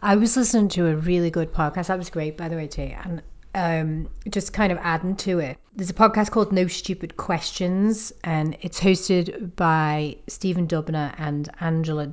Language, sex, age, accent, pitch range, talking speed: English, female, 30-49, British, 160-200 Hz, 190 wpm